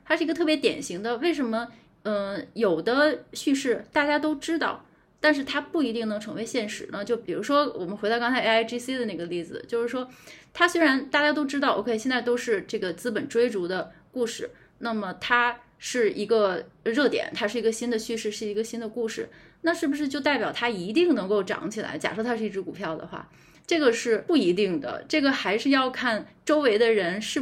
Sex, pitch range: female, 220-295 Hz